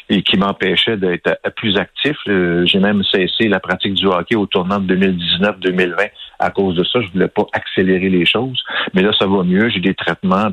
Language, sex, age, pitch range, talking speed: French, male, 50-69, 95-130 Hz, 205 wpm